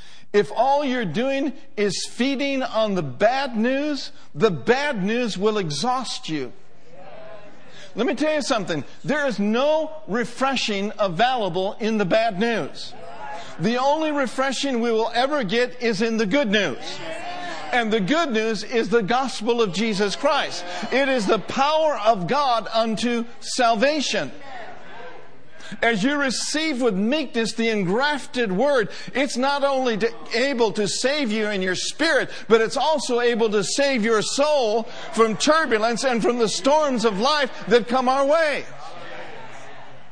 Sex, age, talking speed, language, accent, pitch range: male, 50-69, 145 wpm, English, American, 220-275 Hz